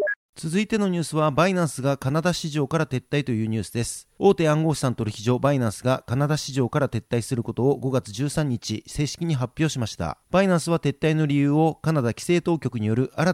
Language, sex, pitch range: Japanese, male, 130-160 Hz